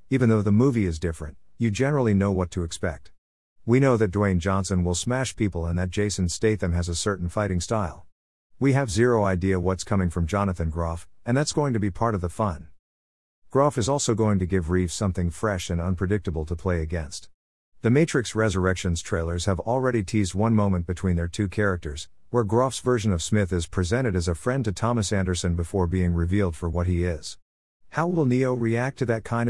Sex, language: male, English